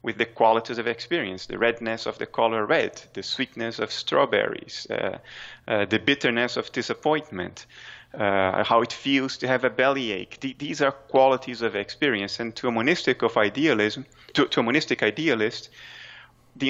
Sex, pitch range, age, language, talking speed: male, 105-125 Hz, 30-49, English, 170 wpm